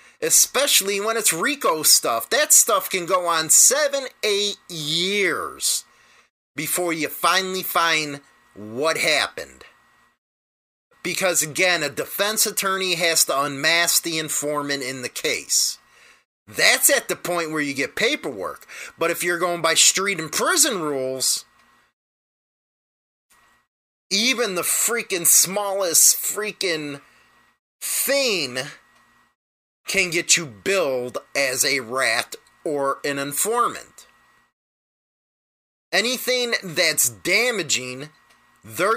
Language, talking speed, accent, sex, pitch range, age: English, 105 wpm, American, male, 150-215 Hz, 30-49